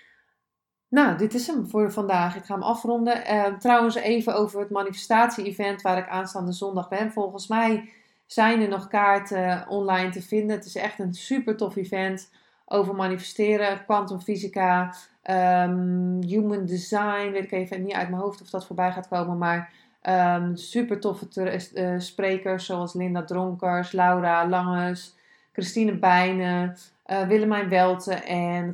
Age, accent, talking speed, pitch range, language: 20-39, Dutch, 155 wpm, 180-205 Hz, Dutch